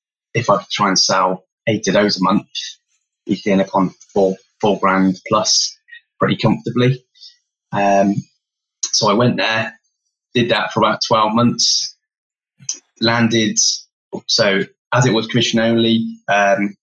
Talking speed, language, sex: 140 wpm, English, male